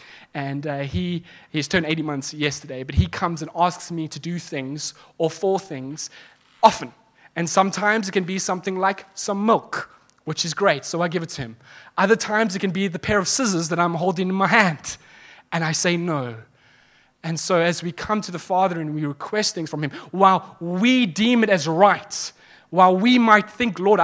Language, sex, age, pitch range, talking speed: English, male, 20-39, 155-215 Hz, 205 wpm